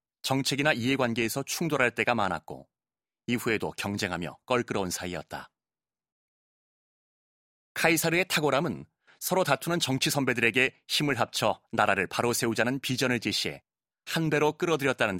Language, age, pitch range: Korean, 30-49, 110-145 Hz